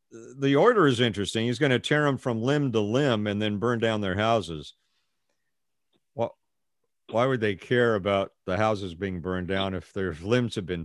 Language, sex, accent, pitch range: English, male, American, 100-135 Hz